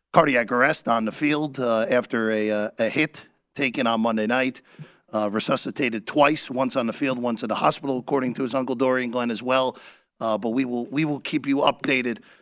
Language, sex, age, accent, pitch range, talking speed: English, male, 40-59, American, 115-150 Hz, 210 wpm